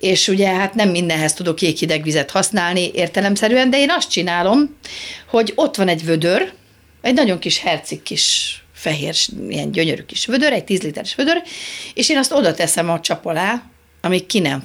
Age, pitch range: 40-59, 160-200 Hz